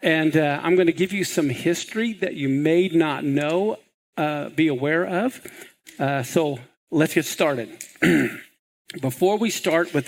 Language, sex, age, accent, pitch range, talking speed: English, male, 50-69, American, 160-220 Hz, 160 wpm